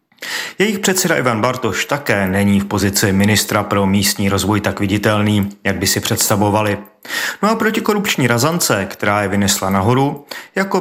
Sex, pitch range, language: male, 100-125 Hz, Czech